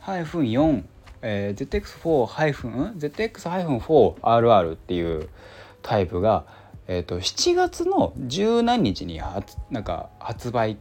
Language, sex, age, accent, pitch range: Japanese, male, 20-39, native, 90-145 Hz